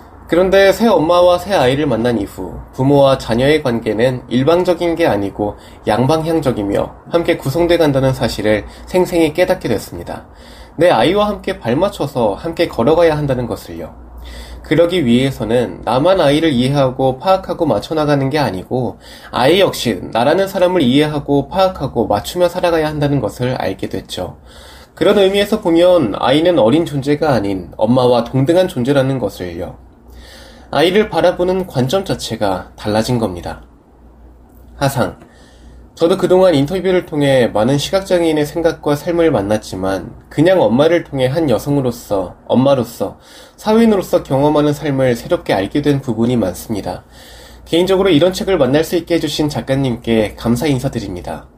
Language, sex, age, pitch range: Korean, male, 20-39, 115-170 Hz